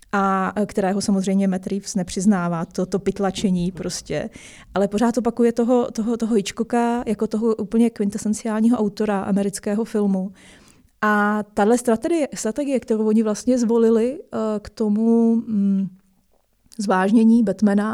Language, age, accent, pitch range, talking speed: Czech, 30-49, native, 190-215 Hz, 125 wpm